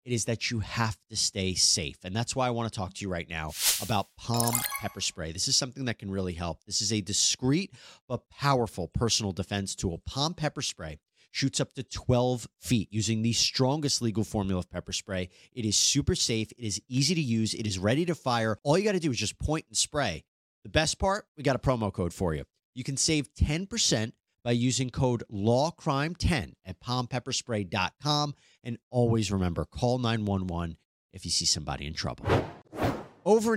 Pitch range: 100-140 Hz